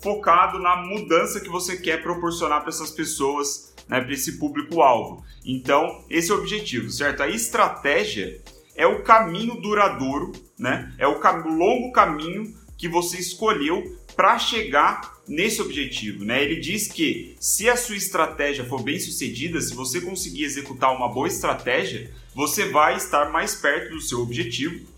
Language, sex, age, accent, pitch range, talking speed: Portuguese, male, 30-49, Brazilian, 145-195 Hz, 155 wpm